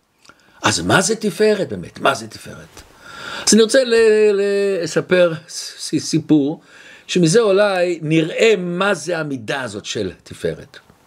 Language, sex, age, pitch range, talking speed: Hebrew, male, 60-79, 140-210 Hz, 135 wpm